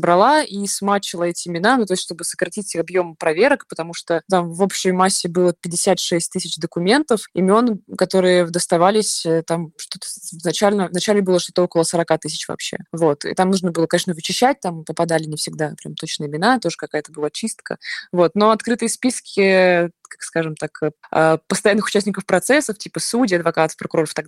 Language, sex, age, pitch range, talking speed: Russian, female, 20-39, 165-200 Hz, 170 wpm